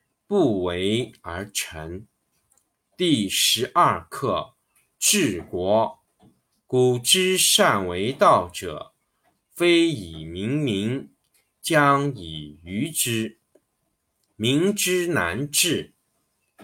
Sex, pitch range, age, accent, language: male, 100-155 Hz, 50-69, native, Chinese